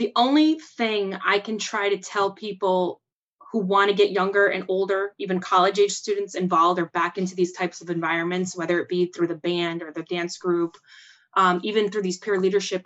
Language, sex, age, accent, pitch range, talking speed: English, female, 20-39, American, 180-210 Hz, 205 wpm